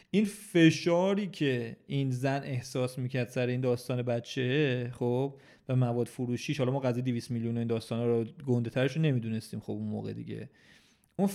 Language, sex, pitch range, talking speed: Persian, male, 120-140 Hz, 170 wpm